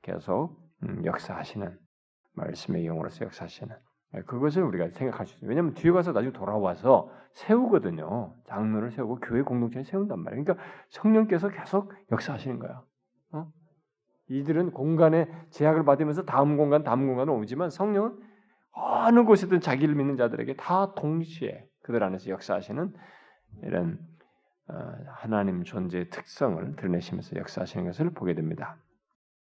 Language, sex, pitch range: Korean, male, 110-165 Hz